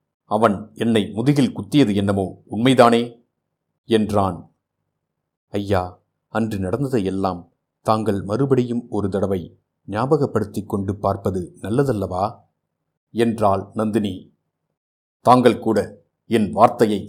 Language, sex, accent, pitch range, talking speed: Tamil, male, native, 100-120 Hz, 85 wpm